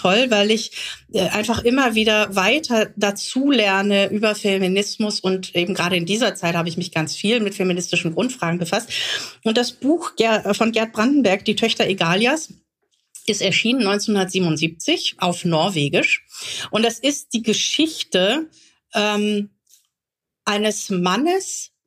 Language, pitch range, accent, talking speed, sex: German, 180-230 Hz, German, 125 wpm, female